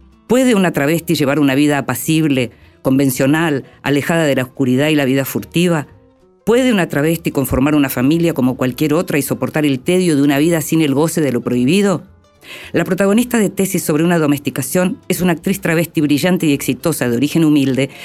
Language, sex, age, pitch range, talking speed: Spanish, female, 40-59, 140-190 Hz, 185 wpm